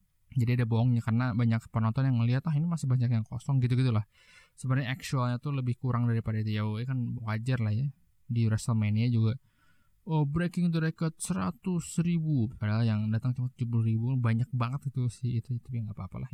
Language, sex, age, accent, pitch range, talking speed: Indonesian, male, 20-39, native, 115-140 Hz, 185 wpm